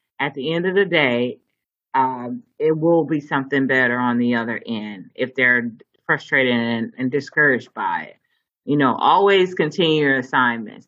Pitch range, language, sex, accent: 130-165 Hz, English, female, American